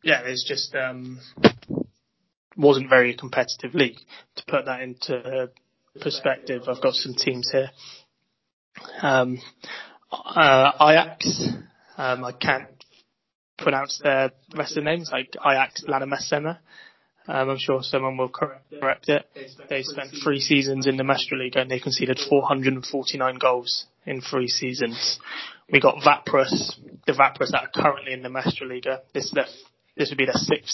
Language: English